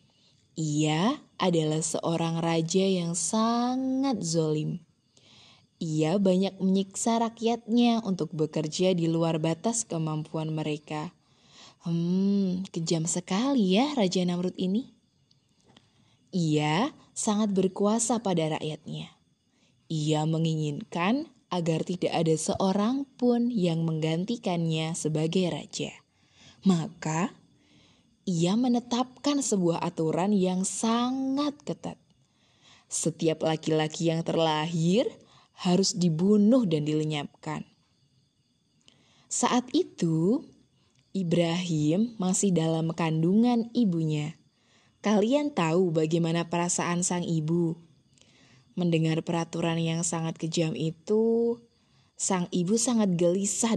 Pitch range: 160-205 Hz